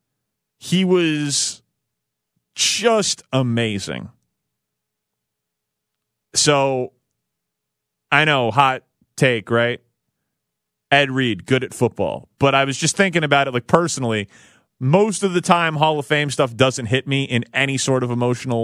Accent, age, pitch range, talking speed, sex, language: American, 30-49, 115-145 Hz, 130 wpm, male, English